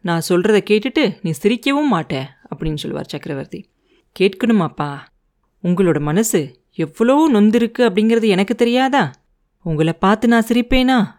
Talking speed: 115 wpm